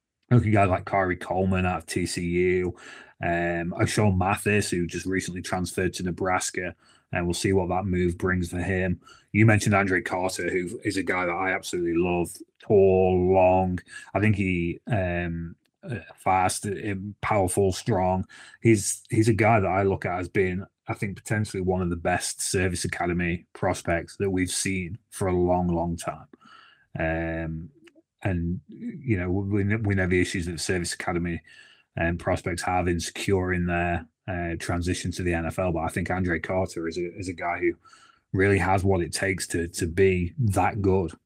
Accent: British